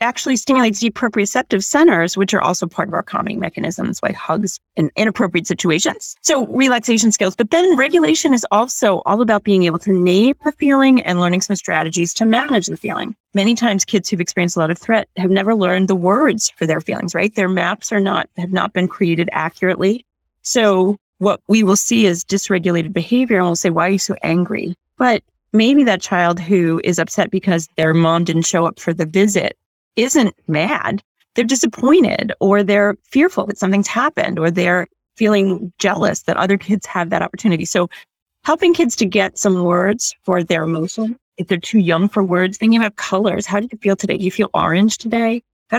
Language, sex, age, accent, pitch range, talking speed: English, female, 30-49, American, 180-225 Hz, 200 wpm